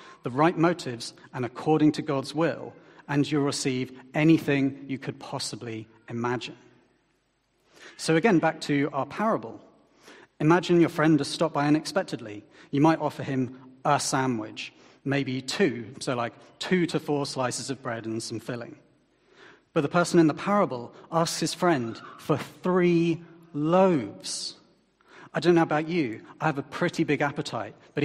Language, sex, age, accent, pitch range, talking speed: English, male, 40-59, British, 135-165 Hz, 155 wpm